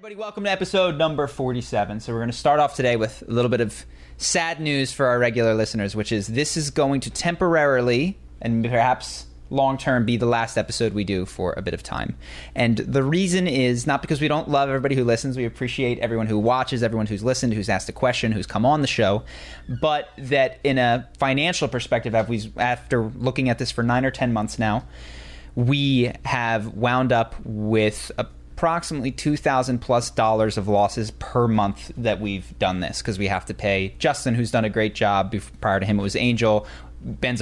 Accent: American